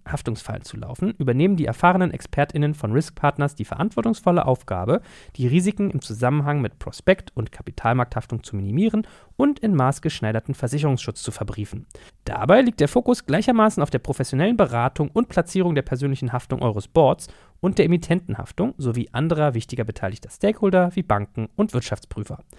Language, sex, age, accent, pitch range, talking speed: German, male, 40-59, German, 120-170 Hz, 150 wpm